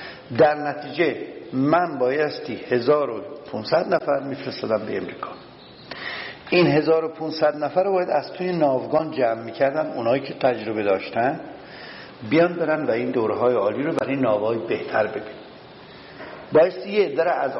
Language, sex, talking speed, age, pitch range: Persian, male, 135 wpm, 60-79, 140-185 Hz